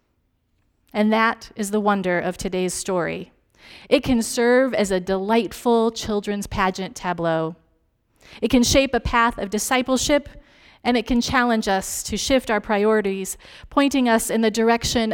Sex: female